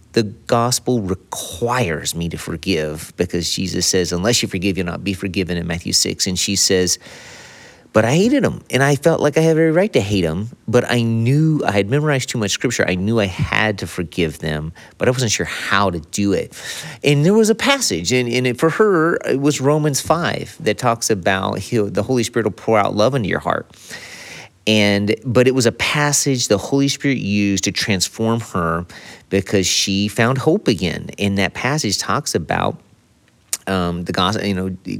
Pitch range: 95-135 Hz